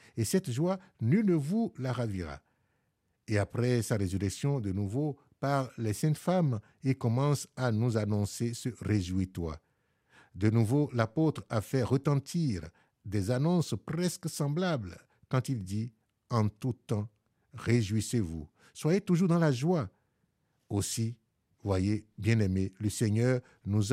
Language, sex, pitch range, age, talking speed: French, male, 100-135 Hz, 60-79, 145 wpm